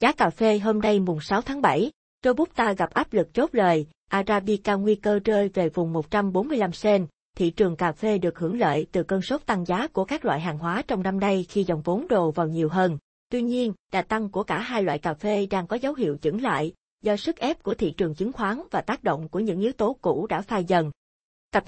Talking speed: 240 wpm